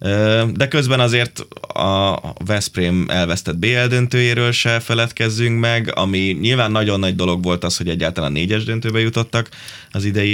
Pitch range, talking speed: 85-100 Hz, 145 wpm